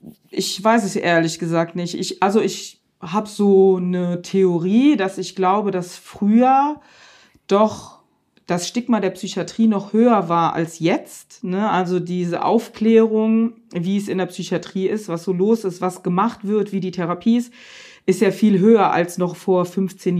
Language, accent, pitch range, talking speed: German, German, 185-220 Hz, 165 wpm